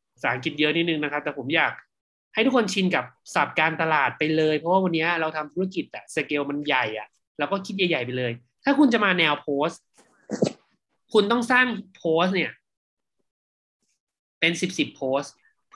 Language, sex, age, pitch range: Thai, male, 20-39, 145-200 Hz